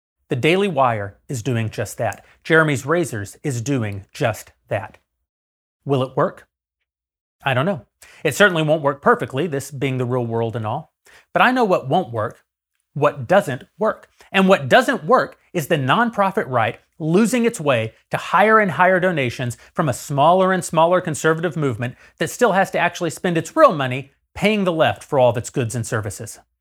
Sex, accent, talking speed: male, American, 185 wpm